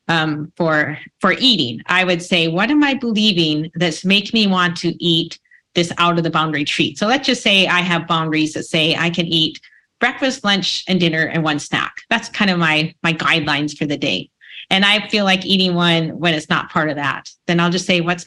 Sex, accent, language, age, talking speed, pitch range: female, American, English, 30-49, 225 wpm, 170-215 Hz